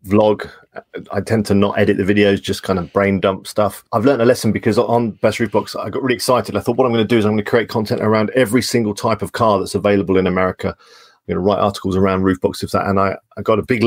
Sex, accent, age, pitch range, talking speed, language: male, British, 40-59, 100-120 Hz, 270 wpm, English